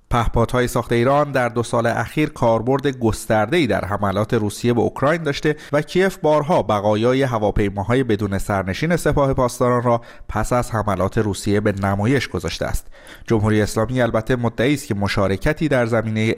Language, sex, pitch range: Persian, male, 105-135 Hz